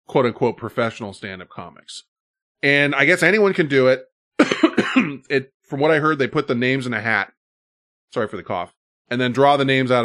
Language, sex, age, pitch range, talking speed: English, male, 20-39, 100-140 Hz, 210 wpm